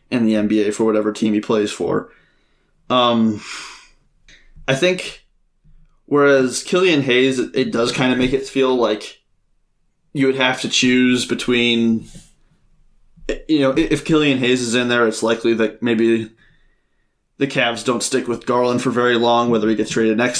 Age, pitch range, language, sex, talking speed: 20-39, 115-130 Hz, English, male, 160 wpm